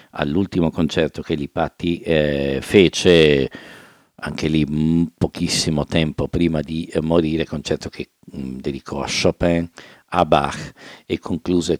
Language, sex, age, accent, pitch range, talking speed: English, male, 50-69, Italian, 75-90 Hz, 125 wpm